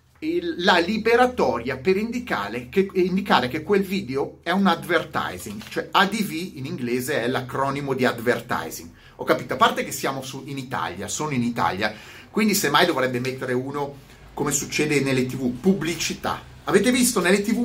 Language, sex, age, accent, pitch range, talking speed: Italian, male, 30-49, native, 140-220 Hz, 165 wpm